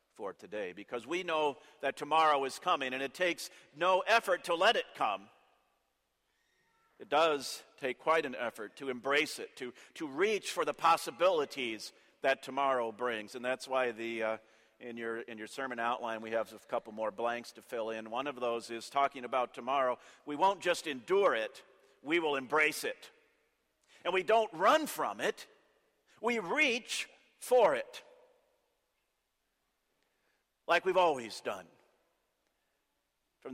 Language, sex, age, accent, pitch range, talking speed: English, male, 50-69, American, 130-180 Hz, 155 wpm